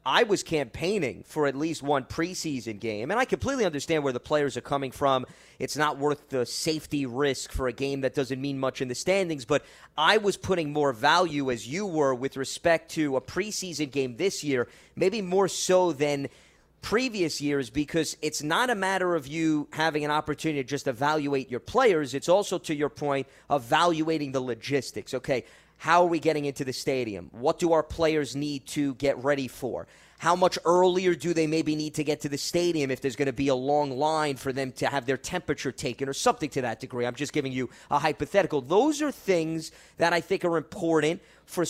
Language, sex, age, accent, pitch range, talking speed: English, male, 30-49, American, 140-170 Hz, 210 wpm